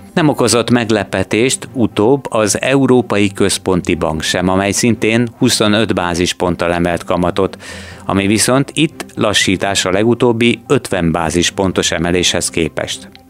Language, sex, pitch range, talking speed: Hungarian, male, 90-110 Hz, 115 wpm